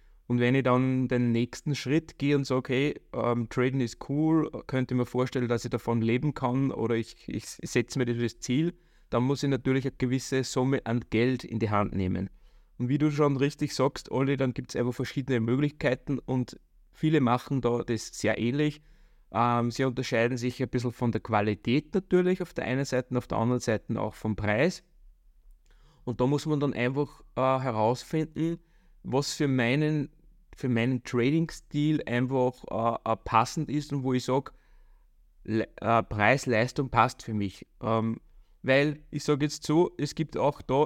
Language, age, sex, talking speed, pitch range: German, 20-39, male, 180 wpm, 120-140 Hz